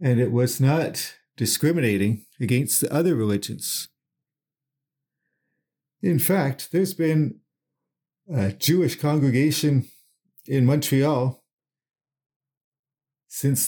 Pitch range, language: 125-150 Hz, English